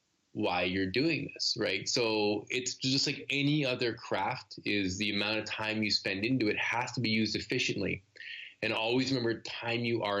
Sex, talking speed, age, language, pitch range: male, 190 wpm, 20-39, English, 100-120 Hz